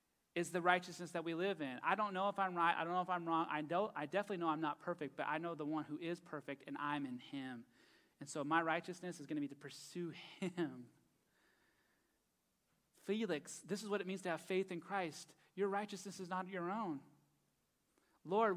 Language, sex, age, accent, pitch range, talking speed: English, male, 30-49, American, 155-190 Hz, 220 wpm